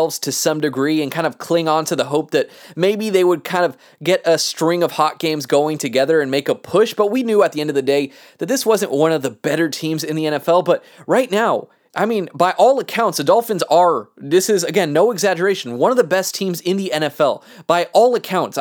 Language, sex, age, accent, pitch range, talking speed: English, male, 20-39, American, 155-195 Hz, 245 wpm